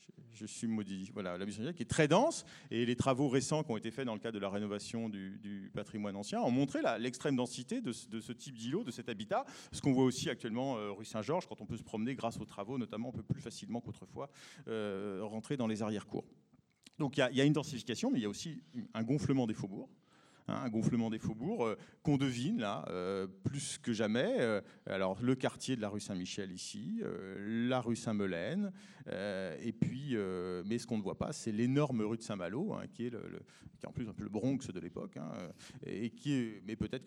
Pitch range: 110-135 Hz